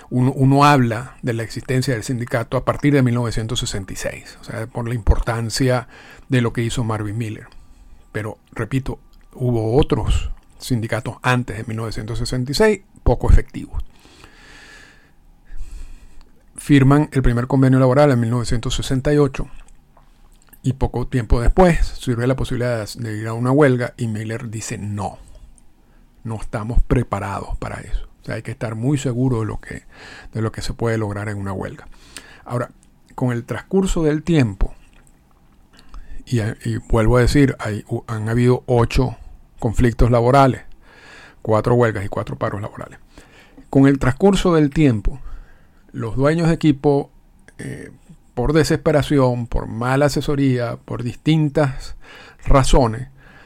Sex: male